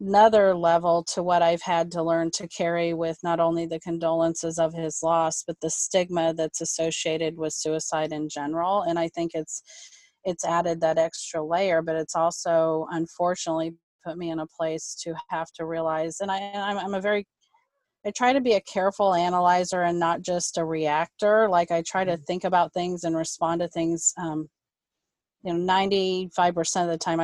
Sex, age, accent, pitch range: female, 30-49, American, 165-195 Hz